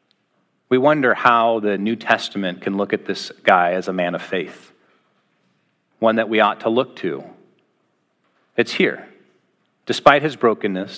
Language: English